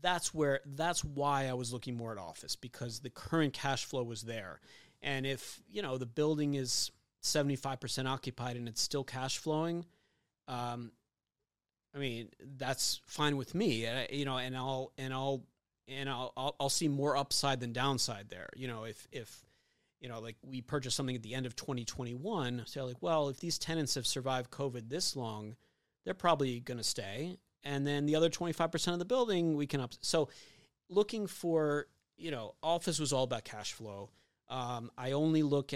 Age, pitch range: 30-49, 120-145 Hz